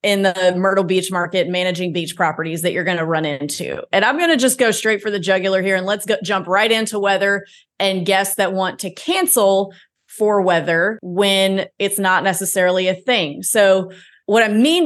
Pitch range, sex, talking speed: 185-230 Hz, female, 200 wpm